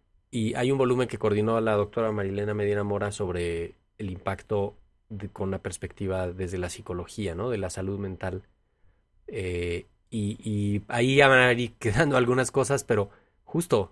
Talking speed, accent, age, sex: 170 wpm, Mexican, 30-49, male